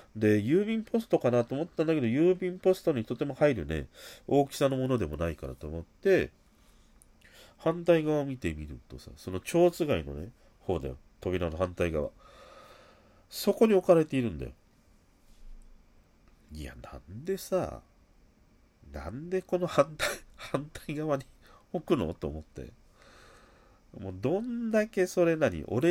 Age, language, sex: 40-59, Japanese, male